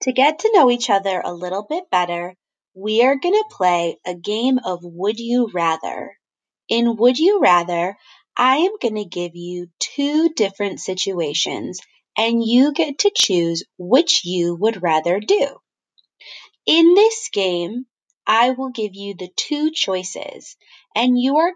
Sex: female